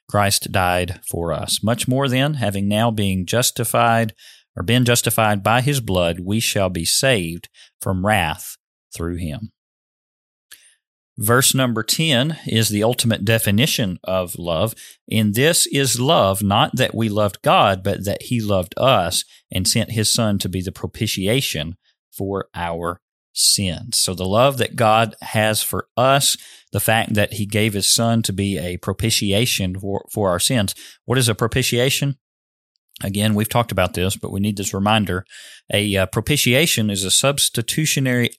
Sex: male